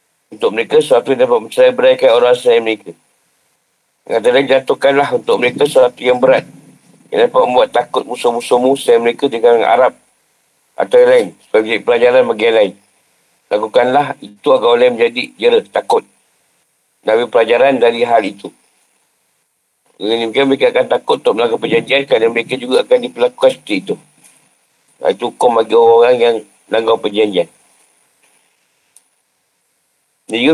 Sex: male